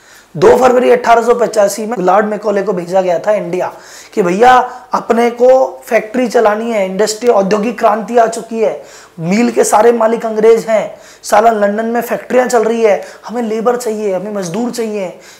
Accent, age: native, 20-39